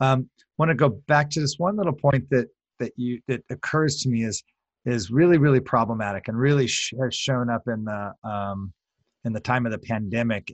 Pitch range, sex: 105-130 Hz, male